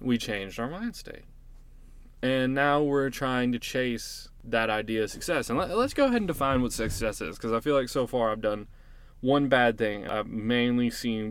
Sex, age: male, 20-39